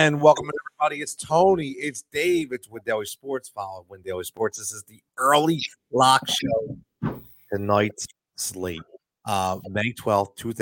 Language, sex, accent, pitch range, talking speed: English, male, American, 115-150 Hz, 145 wpm